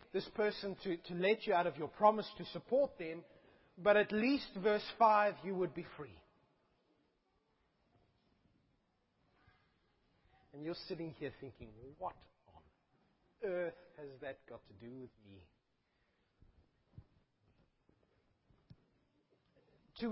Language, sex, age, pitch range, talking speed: English, male, 30-49, 145-195 Hz, 115 wpm